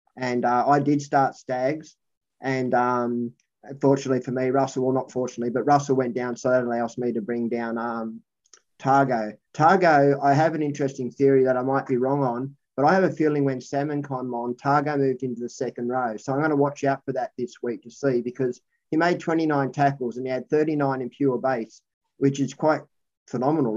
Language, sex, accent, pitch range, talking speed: English, male, Australian, 125-145 Hz, 210 wpm